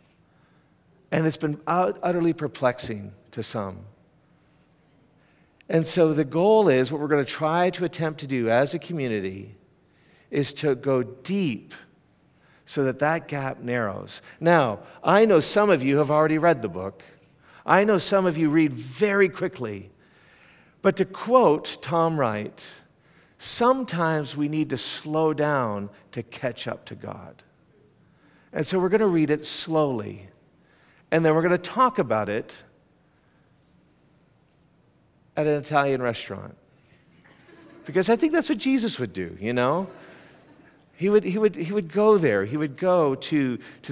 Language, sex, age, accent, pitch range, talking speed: English, male, 50-69, American, 120-175 Hz, 150 wpm